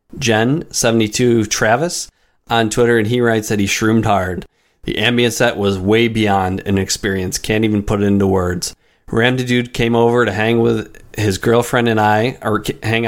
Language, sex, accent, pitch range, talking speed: English, male, American, 100-120 Hz, 180 wpm